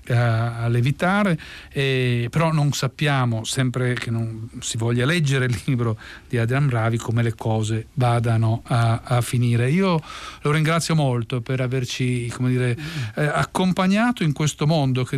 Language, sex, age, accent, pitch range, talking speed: Italian, male, 40-59, native, 120-150 Hz, 155 wpm